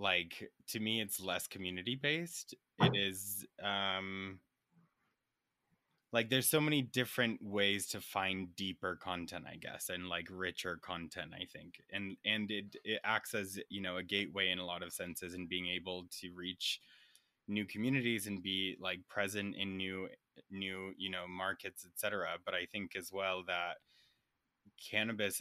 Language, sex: English, male